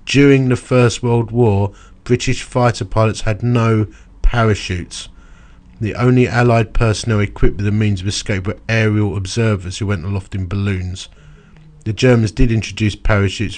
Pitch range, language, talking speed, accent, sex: 95-115 Hz, English, 150 wpm, British, male